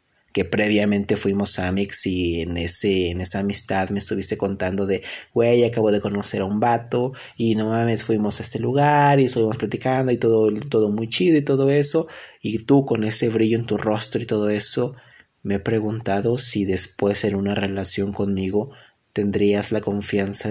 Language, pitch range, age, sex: Spanish, 95-115 Hz, 30-49, male